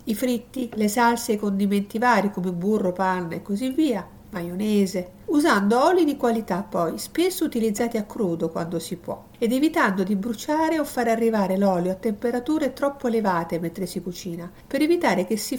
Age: 50-69